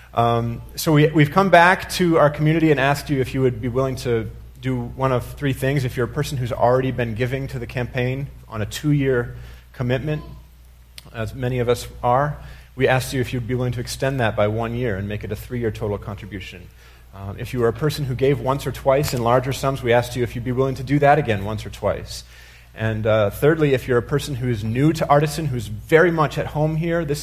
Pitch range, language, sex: 115-140 Hz, English, male